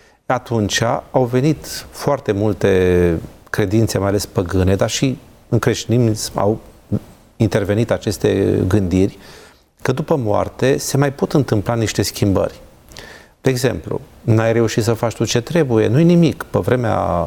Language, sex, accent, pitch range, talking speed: Romanian, male, native, 105-140 Hz, 135 wpm